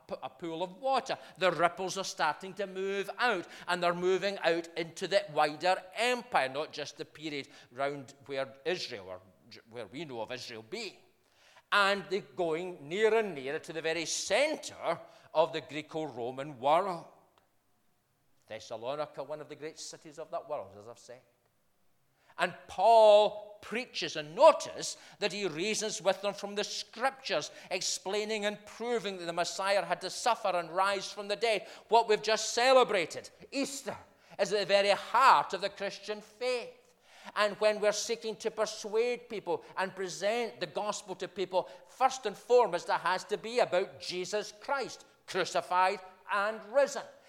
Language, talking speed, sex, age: English, 160 wpm, male, 40-59